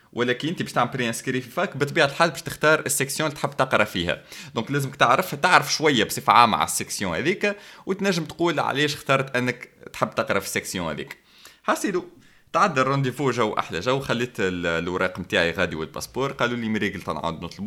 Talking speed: 170 wpm